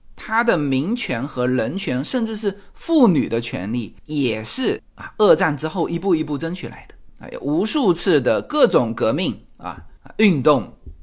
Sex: male